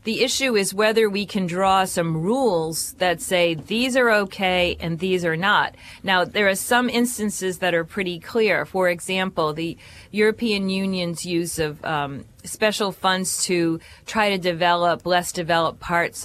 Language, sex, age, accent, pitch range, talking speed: English, female, 40-59, American, 165-200 Hz, 165 wpm